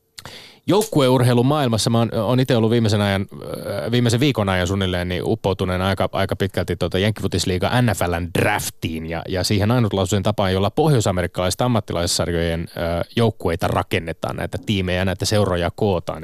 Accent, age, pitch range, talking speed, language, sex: native, 20-39, 90-115 Hz, 130 wpm, Finnish, male